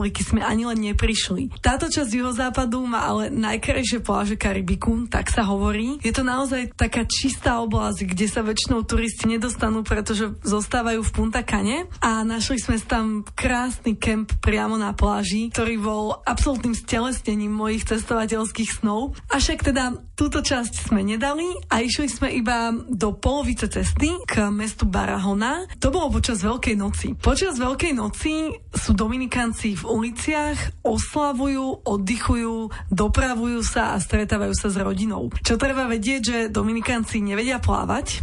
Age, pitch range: 20-39, 215-250 Hz